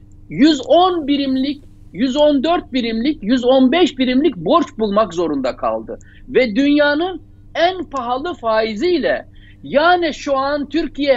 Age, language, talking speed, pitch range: 60-79, Turkish, 100 wpm, 235-315 Hz